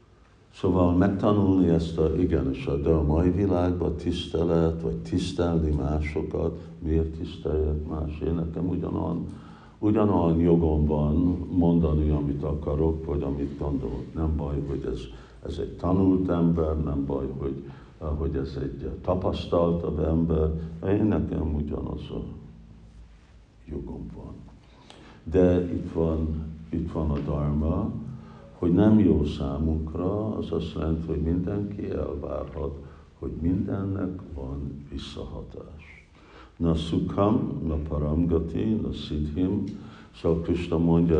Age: 60-79